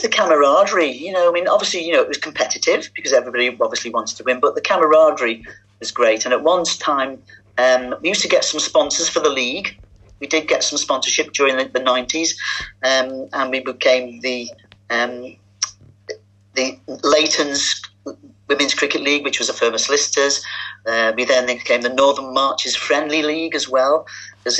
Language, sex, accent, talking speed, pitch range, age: English, male, British, 180 wpm, 110-140 Hz, 40-59